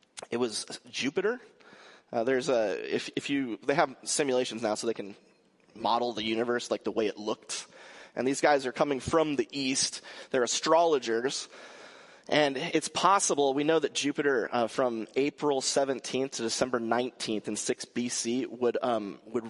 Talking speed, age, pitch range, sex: 165 wpm, 30-49, 125-180 Hz, male